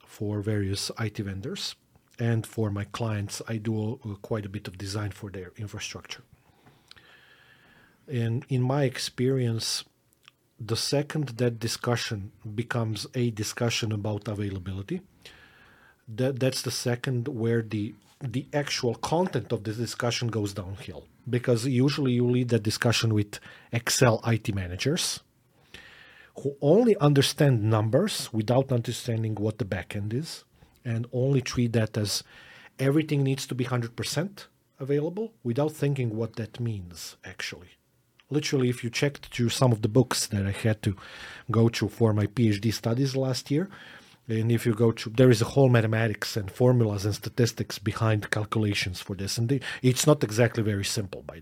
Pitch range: 110-130 Hz